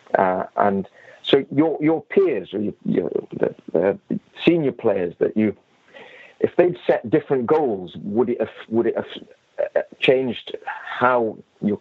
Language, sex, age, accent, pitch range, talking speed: English, male, 40-59, British, 105-150 Hz, 140 wpm